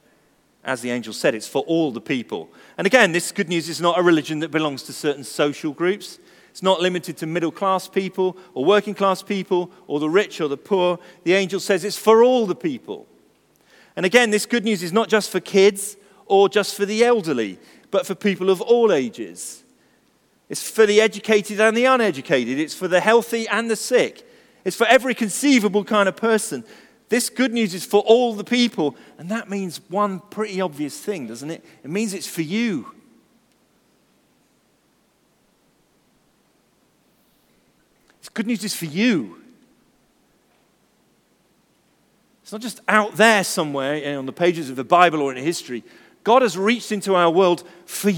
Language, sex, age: English, male, 40-59